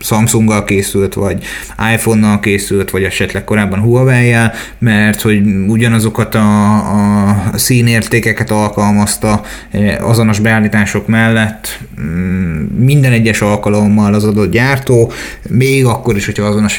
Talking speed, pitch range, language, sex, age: 105 wpm, 105-125 Hz, Hungarian, male, 30-49